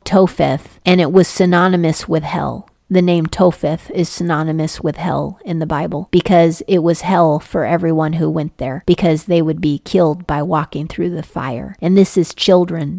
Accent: American